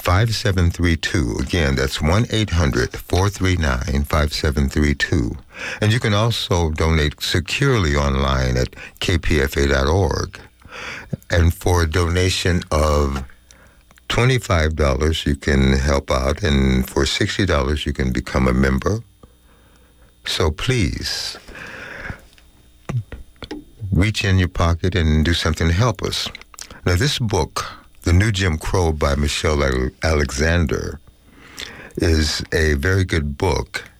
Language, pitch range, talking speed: English, 75-95 Hz, 100 wpm